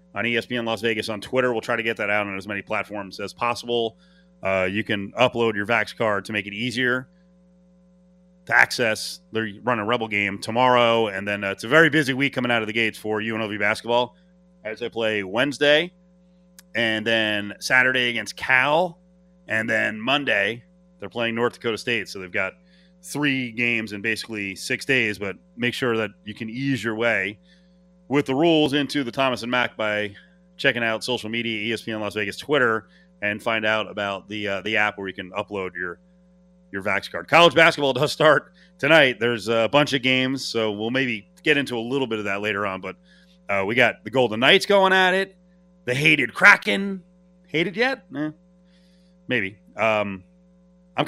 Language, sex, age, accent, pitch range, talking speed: English, male, 30-49, American, 105-160 Hz, 190 wpm